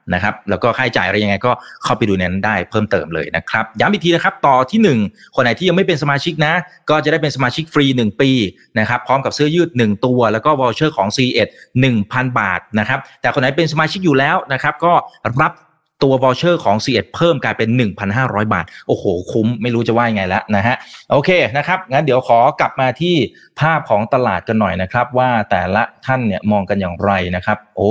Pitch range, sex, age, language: 105-150 Hz, male, 30-49, Thai